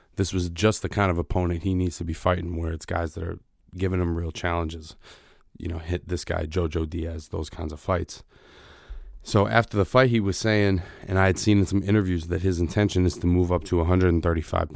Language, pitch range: English, 85-95 Hz